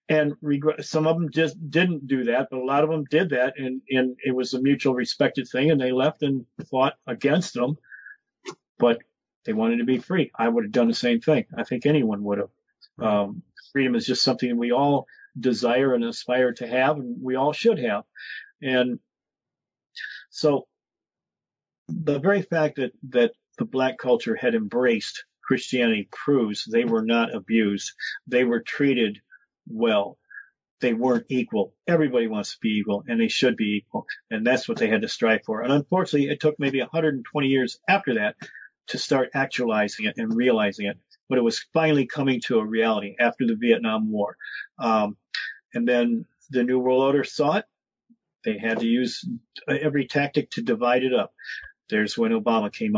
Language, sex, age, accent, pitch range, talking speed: English, male, 50-69, American, 120-175 Hz, 180 wpm